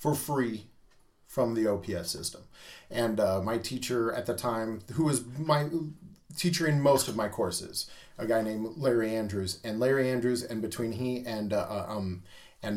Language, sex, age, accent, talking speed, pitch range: English, male, 40-59, American, 175 wpm, 110-130 Hz